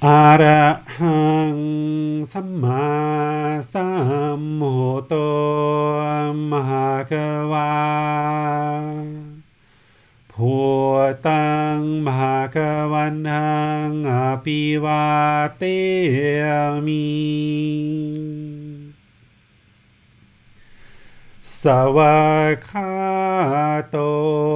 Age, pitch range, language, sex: 40-59, 140-150 Hz, English, male